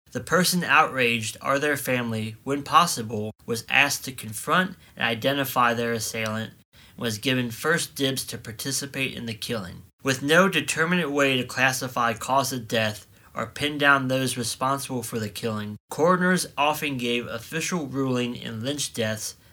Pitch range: 115-140 Hz